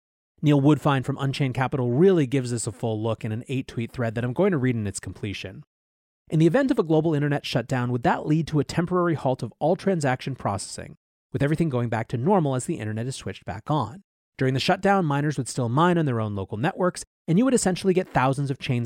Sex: male